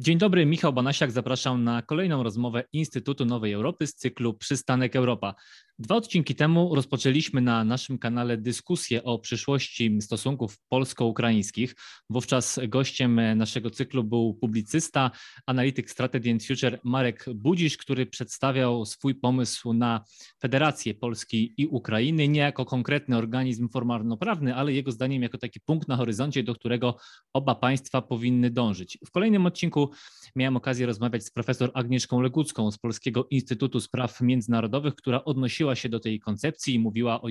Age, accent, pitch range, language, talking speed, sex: 20-39, native, 120-135 Hz, Polish, 145 wpm, male